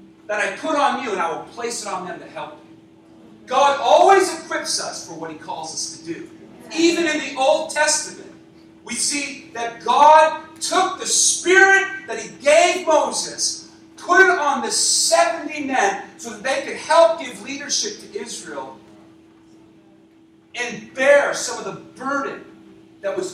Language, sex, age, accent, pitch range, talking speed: English, male, 40-59, American, 225-330 Hz, 165 wpm